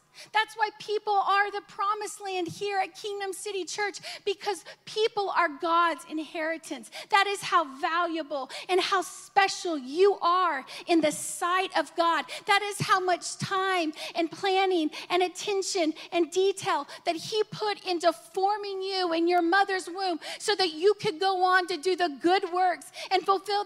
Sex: female